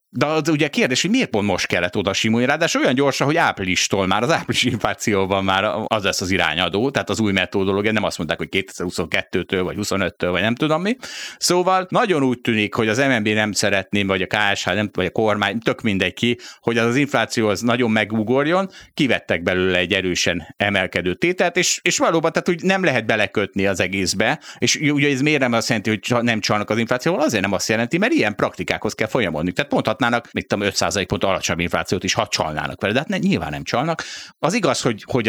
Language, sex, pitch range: Hungarian, male, 100-135 Hz